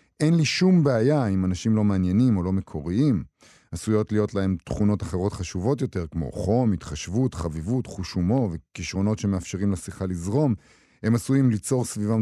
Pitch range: 95-120 Hz